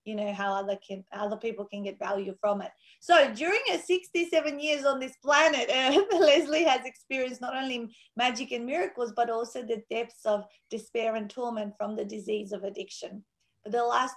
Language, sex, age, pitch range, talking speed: English, female, 30-49, 210-250 Hz, 190 wpm